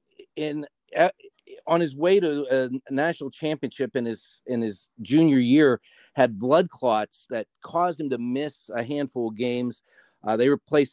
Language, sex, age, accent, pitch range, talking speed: English, male, 40-59, American, 110-145 Hz, 160 wpm